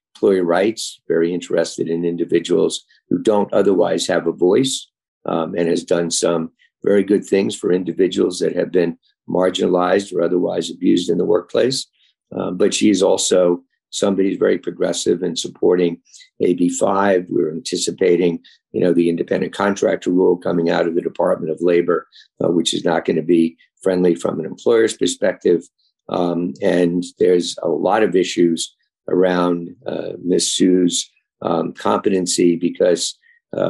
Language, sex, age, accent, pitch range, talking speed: English, male, 50-69, American, 85-100 Hz, 150 wpm